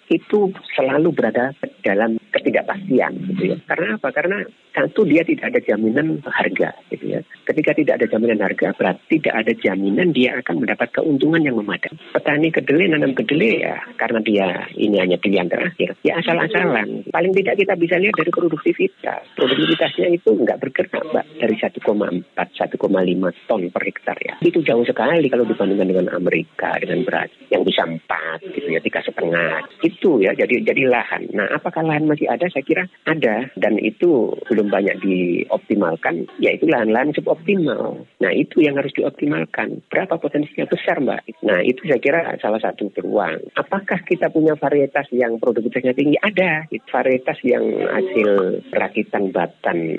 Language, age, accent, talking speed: Indonesian, 40-59, native, 160 wpm